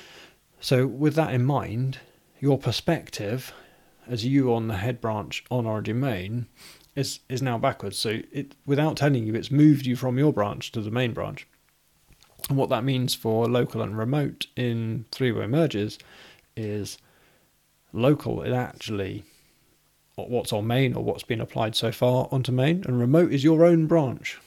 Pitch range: 115-140 Hz